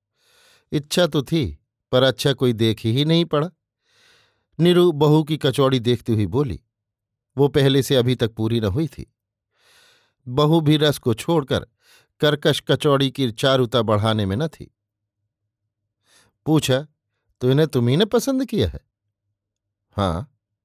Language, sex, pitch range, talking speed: Hindi, male, 105-145 Hz, 140 wpm